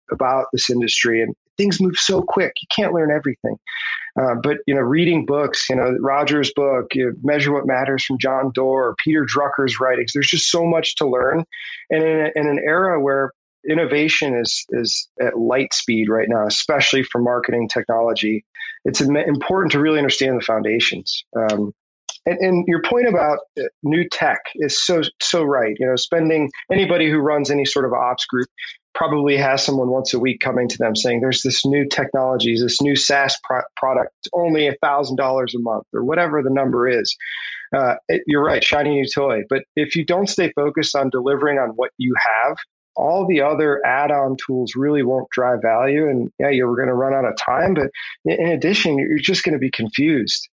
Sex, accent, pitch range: male, American, 130-155 Hz